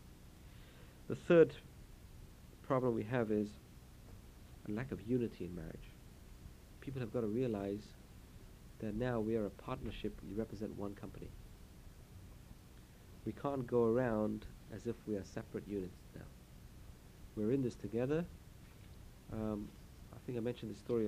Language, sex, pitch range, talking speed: English, male, 100-120 Hz, 140 wpm